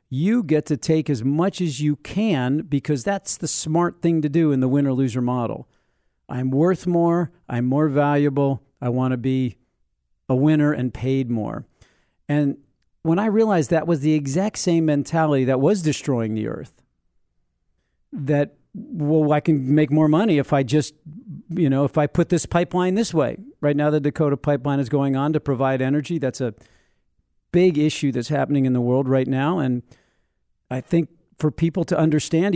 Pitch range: 130-165 Hz